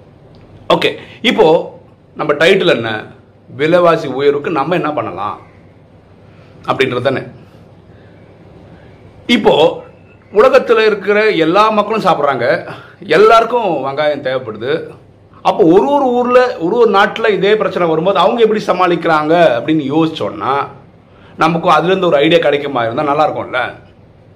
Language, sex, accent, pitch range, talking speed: Tamil, male, native, 125-205 Hz, 110 wpm